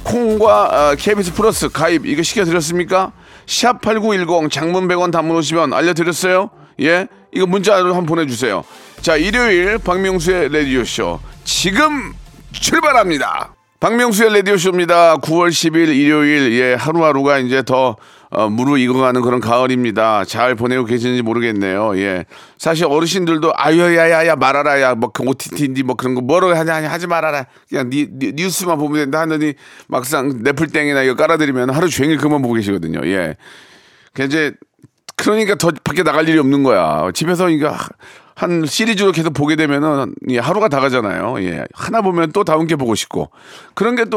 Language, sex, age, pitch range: Korean, male, 40-59, 130-175 Hz